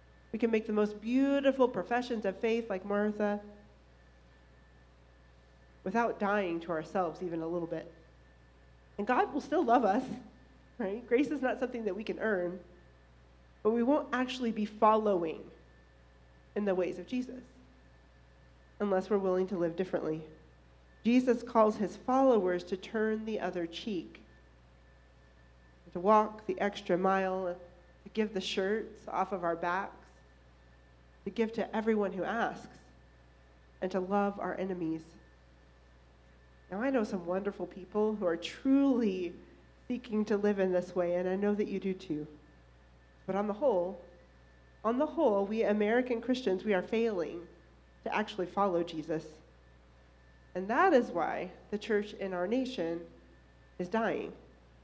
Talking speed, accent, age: 145 wpm, American, 40-59